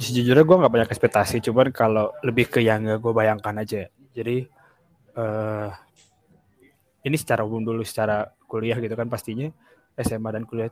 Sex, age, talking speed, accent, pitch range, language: male, 20-39, 150 wpm, native, 110-130 Hz, Indonesian